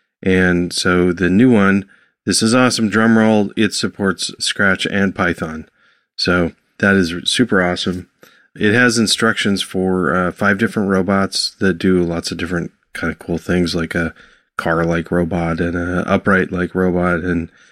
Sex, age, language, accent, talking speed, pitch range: male, 30-49, English, American, 150 wpm, 90-105 Hz